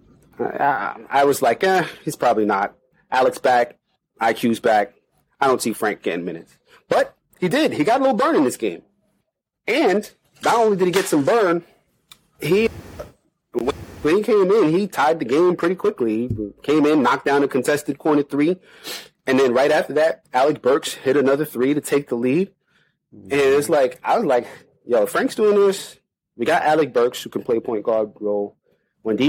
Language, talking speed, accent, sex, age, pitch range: English, 190 wpm, American, male, 30-49, 125-185 Hz